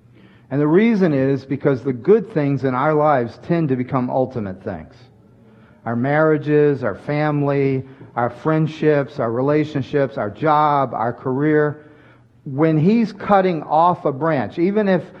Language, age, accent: English, 40-59, American